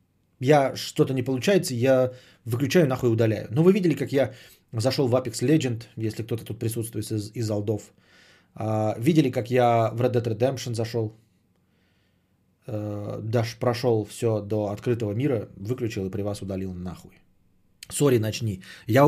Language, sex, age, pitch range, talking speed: Bulgarian, male, 20-39, 100-145 Hz, 150 wpm